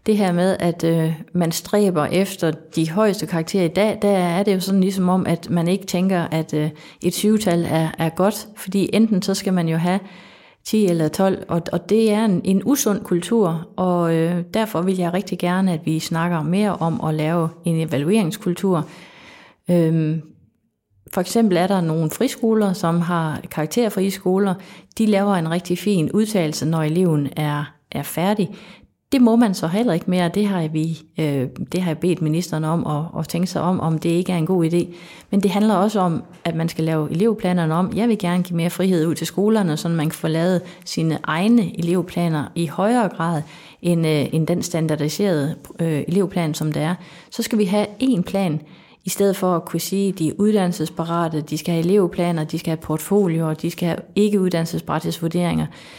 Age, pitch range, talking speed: 30-49, 160-195 Hz, 195 wpm